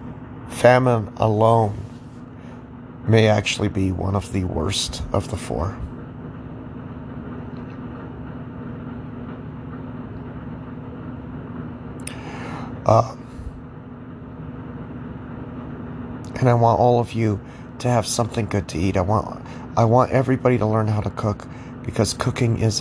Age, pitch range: 40-59, 110-125 Hz